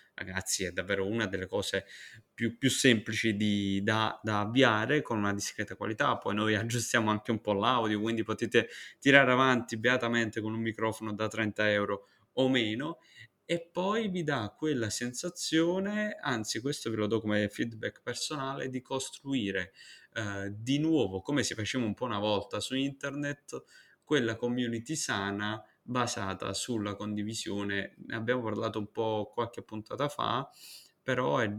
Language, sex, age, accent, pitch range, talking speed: Italian, male, 20-39, native, 100-125 Hz, 155 wpm